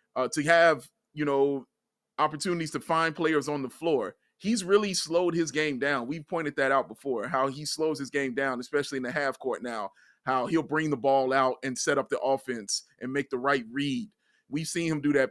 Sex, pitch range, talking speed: male, 135-165 Hz, 220 wpm